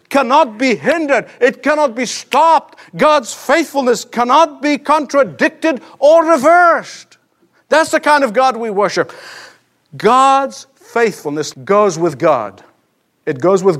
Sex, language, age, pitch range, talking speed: male, English, 50-69, 240-295 Hz, 125 wpm